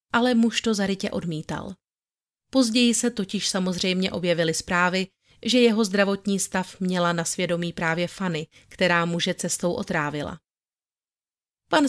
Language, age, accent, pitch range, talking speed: Czech, 30-49, native, 180-220 Hz, 125 wpm